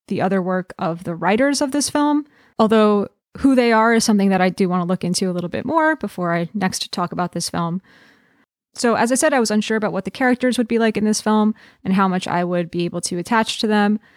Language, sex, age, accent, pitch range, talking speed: English, female, 20-39, American, 185-230 Hz, 255 wpm